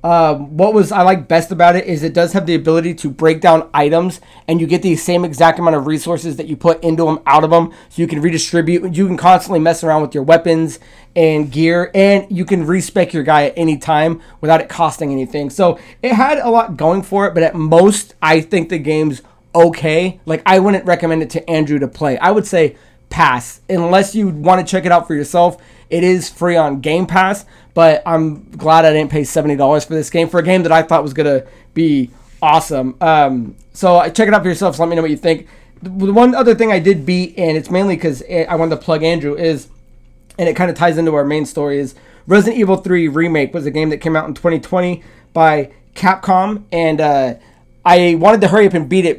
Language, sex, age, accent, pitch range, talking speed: English, male, 20-39, American, 155-180 Hz, 235 wpm